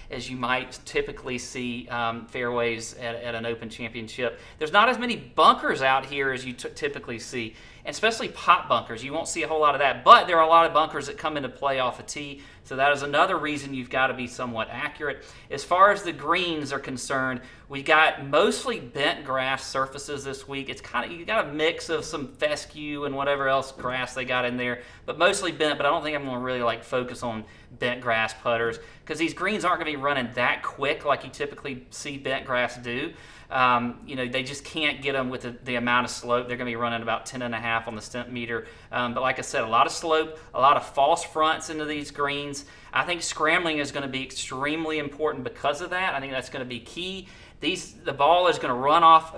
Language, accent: English, American